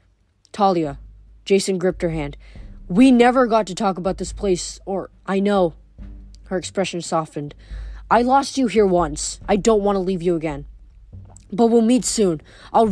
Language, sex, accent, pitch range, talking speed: English, female, American, 170-235 Hz, 165 wpm